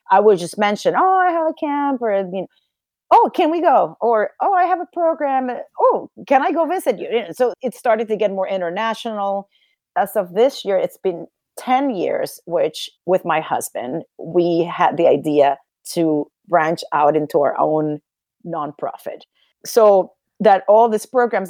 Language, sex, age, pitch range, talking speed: English, female, 40-59, 185-250 Hz, 170 wpm